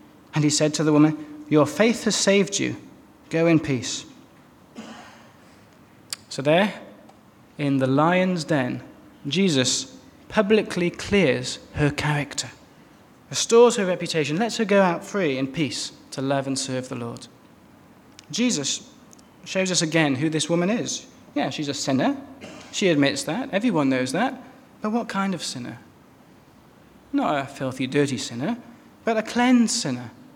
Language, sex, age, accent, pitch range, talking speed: English, male, 30-49, British, 140-225 Hz, 145 wpm